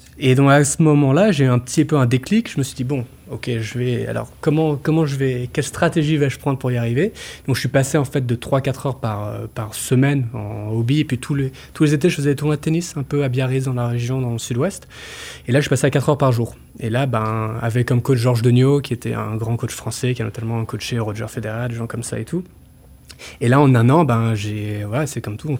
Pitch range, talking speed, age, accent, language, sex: 115-145 Hz, 275 wpm, 20-39, French, French, male